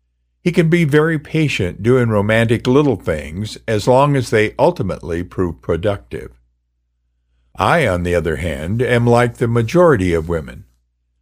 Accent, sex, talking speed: American, male, 145 wpm